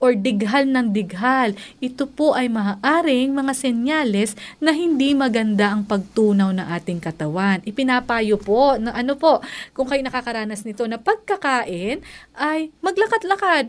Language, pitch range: Filipino, 215-285 Hz